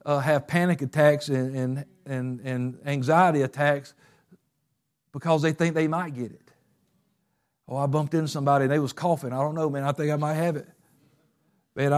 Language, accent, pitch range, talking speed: English, American, 130-165 Hz, 185 wpm